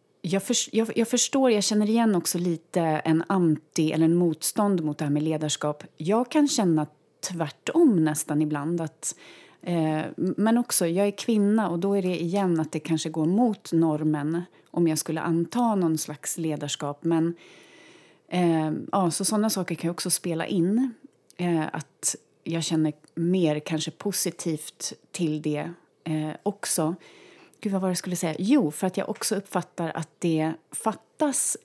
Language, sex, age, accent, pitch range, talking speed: Swedish, female, 30-49, native, 155-200 Hz, 160 wpm